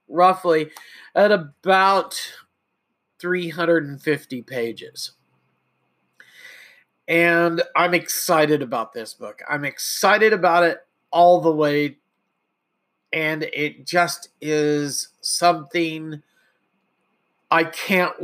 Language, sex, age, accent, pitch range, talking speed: English, male, 40-59, American, 150-185 Hz, 80 wpm